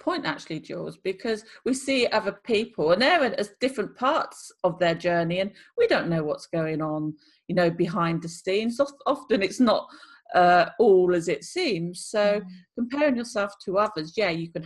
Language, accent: English, British